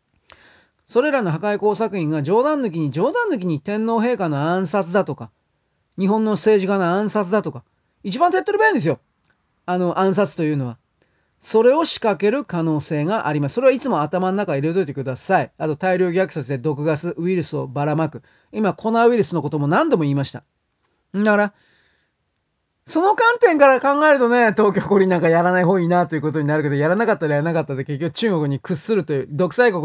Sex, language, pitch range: male, Japanese, 155-220 Hz